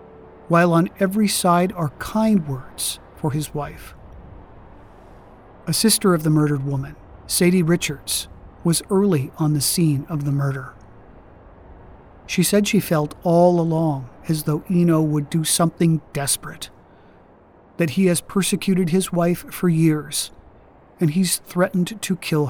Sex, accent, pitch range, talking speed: male, American, 130-175 Hz, 140 wpm